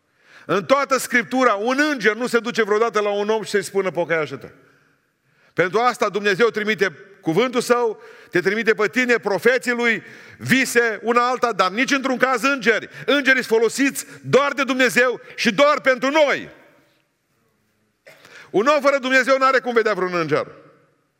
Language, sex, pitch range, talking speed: Romanian, male, 225-270 Hz, 160 wpm